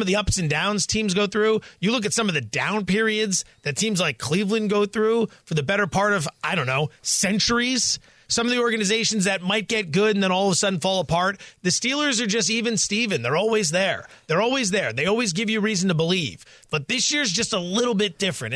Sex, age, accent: male, 30-49, American